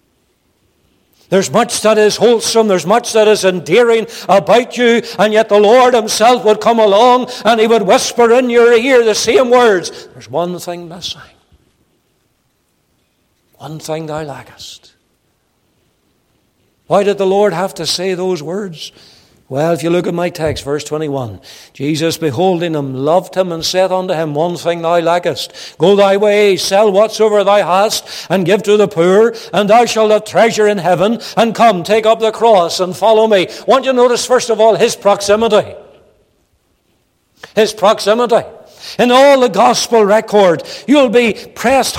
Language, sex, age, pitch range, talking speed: English, male, 60-79, 180-225 Hz, 165 wpm